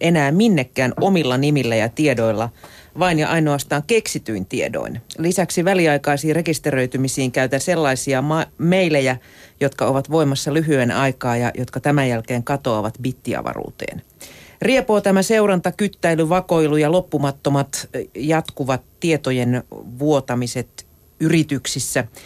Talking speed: 110 wpm